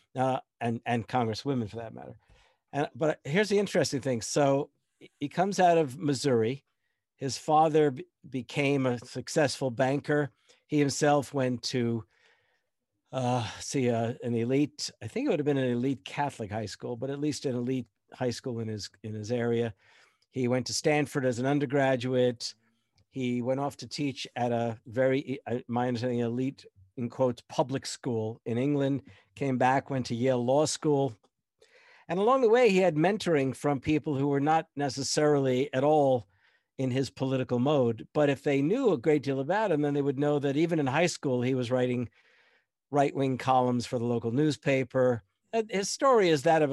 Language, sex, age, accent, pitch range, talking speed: English, male, 50-69, American, 125-150 Hz, 180 wpm